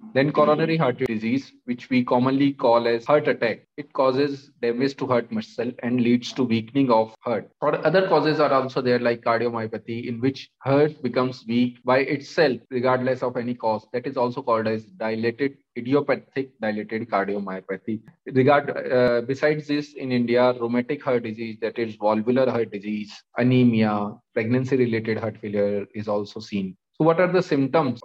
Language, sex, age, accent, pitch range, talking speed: English, male, 20-39, Indian, 115-145 Hz, 165 wpm